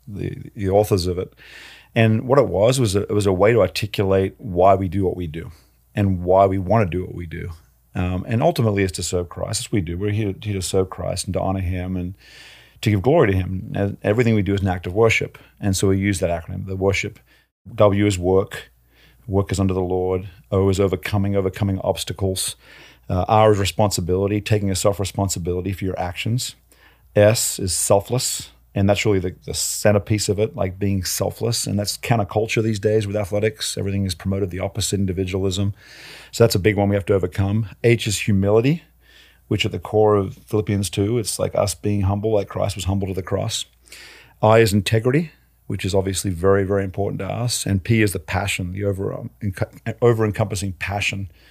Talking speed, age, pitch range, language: 205 wpm, 40-59, 95-110 Hz, English